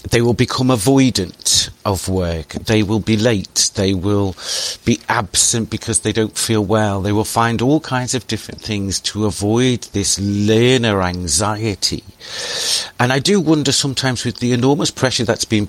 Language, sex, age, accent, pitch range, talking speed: English, male, 50-69, British, 100-120 Hz, 165 wpm